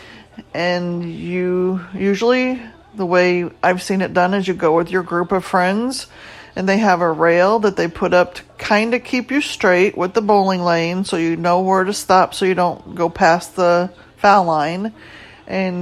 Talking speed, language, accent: 195 wpm, English, American